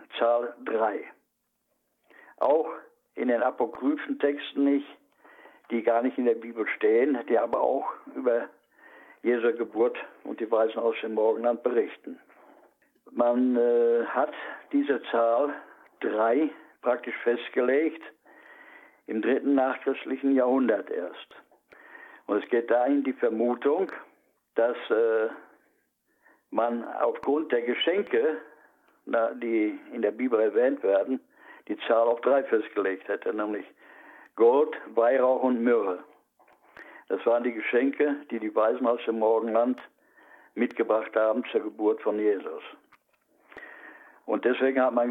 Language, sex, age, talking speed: German, male, 60-79, 120 wpm